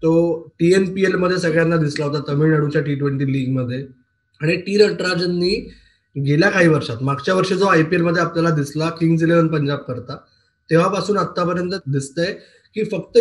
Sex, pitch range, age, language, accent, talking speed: male, 155-195 Hz, 20-39, Marathi, native, 110 wpm